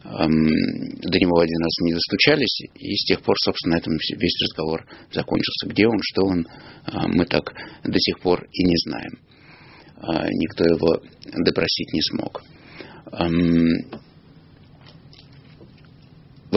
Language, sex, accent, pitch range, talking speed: Russian, male, native, 85-105 Hz, 125 wpm